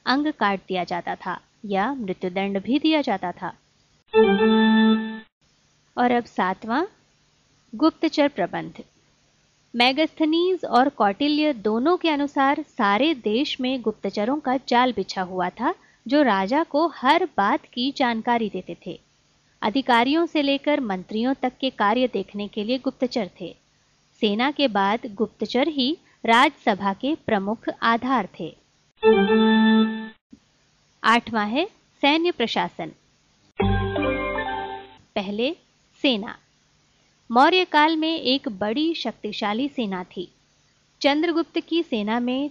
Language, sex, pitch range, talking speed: Hindi, female, 205-290 Hz, 115 wpm